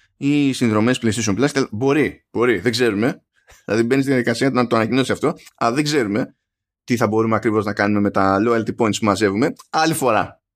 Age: 20-39